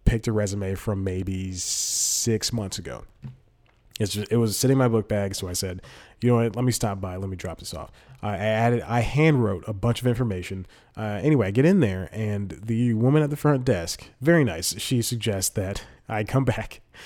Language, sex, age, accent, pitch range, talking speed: English, male, 30-49, American, 100-125 Hz, 220 wpm